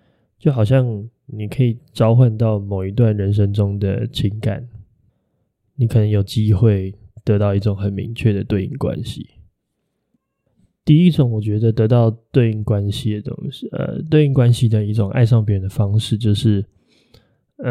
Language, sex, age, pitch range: Chinese, male, 20-39, 105-130 Hz